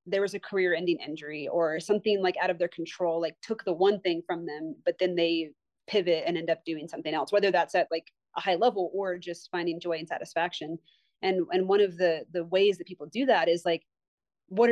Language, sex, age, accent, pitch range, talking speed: English, female, 30-49, American, 170-200 Hz, 230 wpm